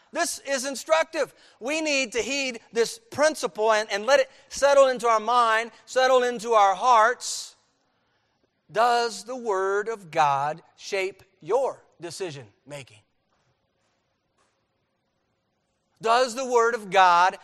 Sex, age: male, 50-69